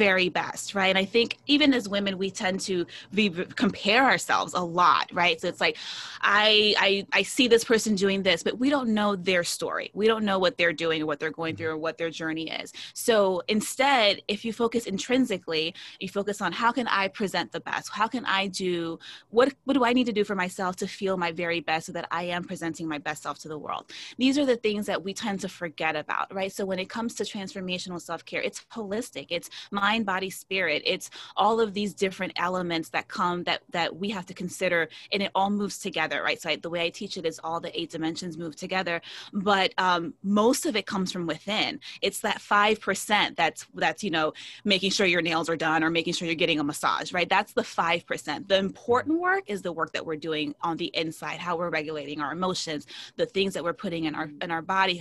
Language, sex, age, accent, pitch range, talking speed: English, female, 20-39, American, 170-205 Hz, 235 wpm